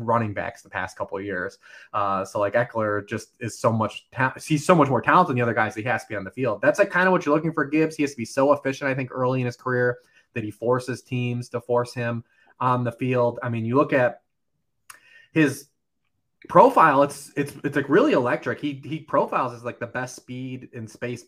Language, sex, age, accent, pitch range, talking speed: English, male, 30-49, American, 115-140 Hz, 245 wpm